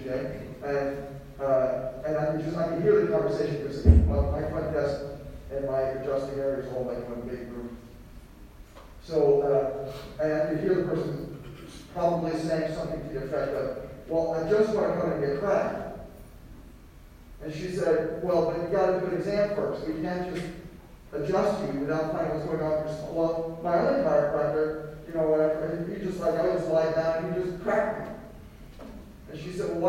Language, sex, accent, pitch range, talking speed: English, male, American, 145-190 Hz, 180 wpm